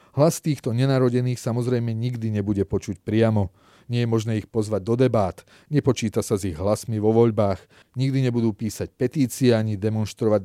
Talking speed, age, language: 160 wpm, 30-49, Slovak